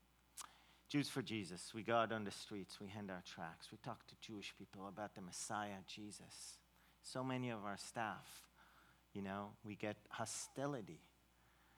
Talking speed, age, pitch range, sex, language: 165 wpm, 40-59, 105-125 Hz, male, English